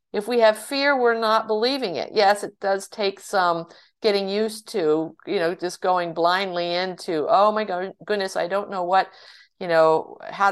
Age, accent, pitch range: 50-69, American, 180-230 Hz